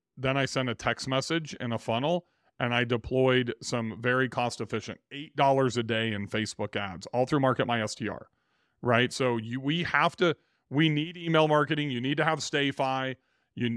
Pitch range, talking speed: 120-140 Hz, 185 wpm